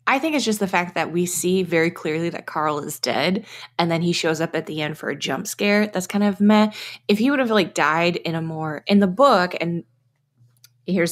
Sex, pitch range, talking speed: female, 155-195 Hz, 250 wpm